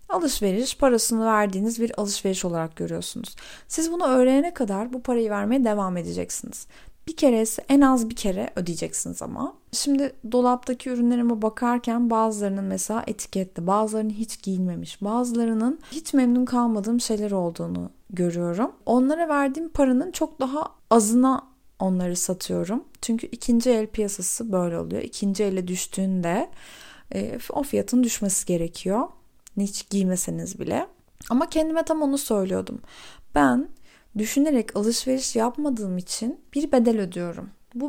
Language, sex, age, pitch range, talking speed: Turkish, female, 30-49, 195-260 Hz, 125 wpm